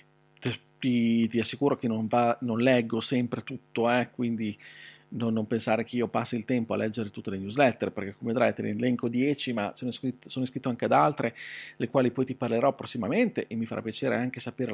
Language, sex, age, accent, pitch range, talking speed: Italian, male, 40-59, native, 120-160 Hz, 205 wpm